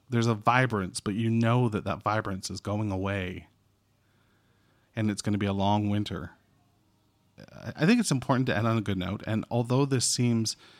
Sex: male